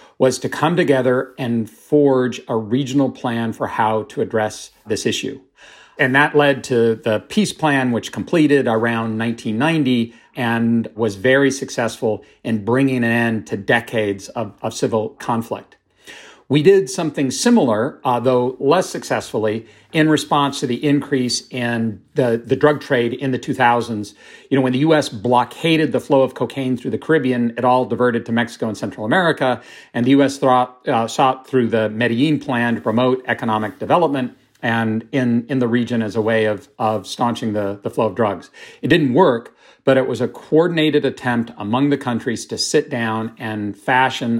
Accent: American